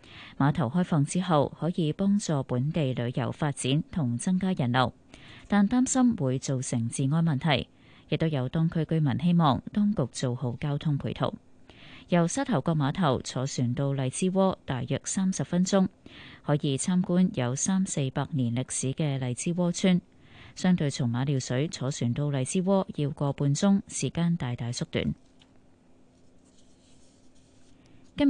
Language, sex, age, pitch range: Chinese, female, 20-39, 135-180 Hz